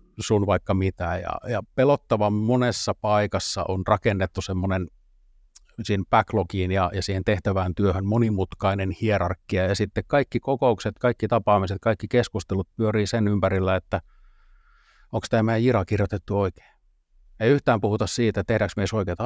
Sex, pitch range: male, 95-110 Hz